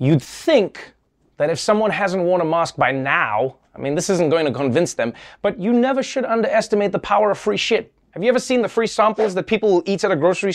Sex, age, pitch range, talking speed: male, 30-49, 180-245 Hz, 245 wpm